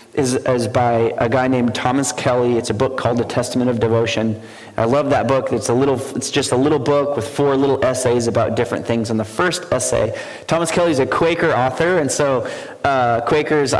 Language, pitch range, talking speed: English, 115-135 Hz, 215 wpm